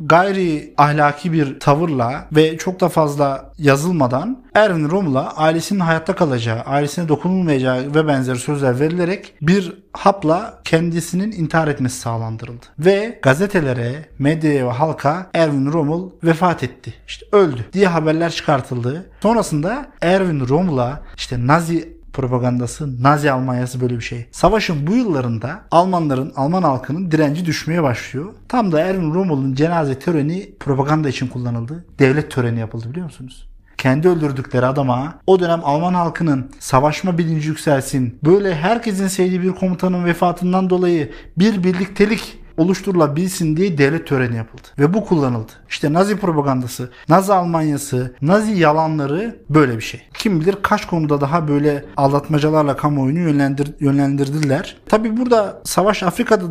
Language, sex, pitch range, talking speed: Turkish, male, 140-180 Hz, 135 wpm